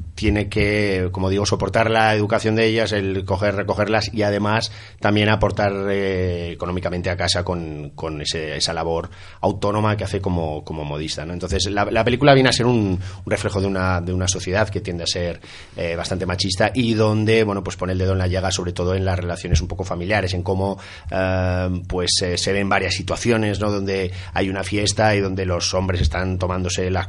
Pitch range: 90-105 Hz